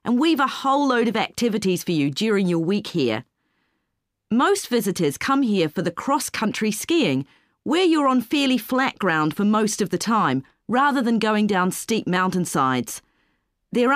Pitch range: 180-265 Hz